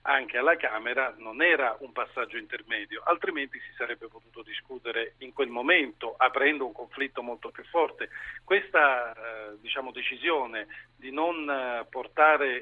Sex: male